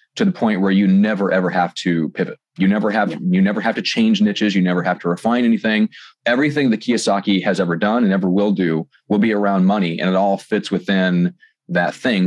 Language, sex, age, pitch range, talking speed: English, male, 30-49, 90-125 Hz, 225 wpm